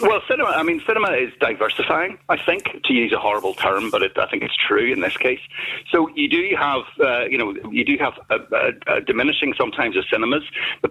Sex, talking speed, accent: male, 225 wpm, British